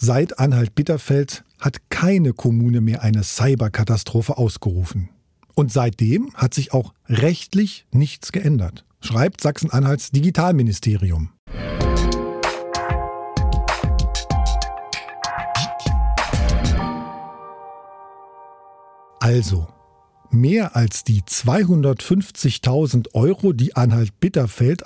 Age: 50-69